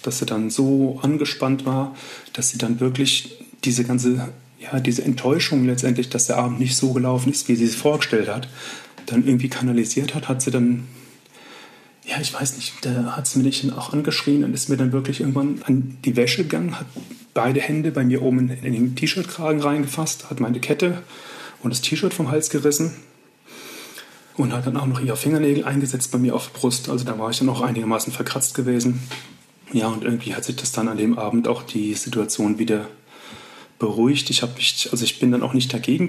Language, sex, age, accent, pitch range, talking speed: German, male, 40-59, German, 120-140 Hz, 205 wpm